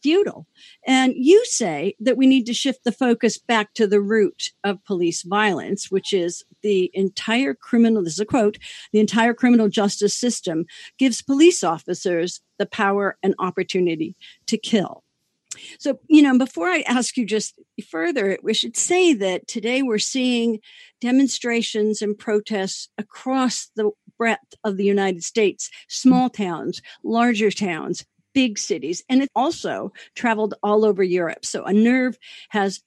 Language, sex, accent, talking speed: English, female, American, 155 wpm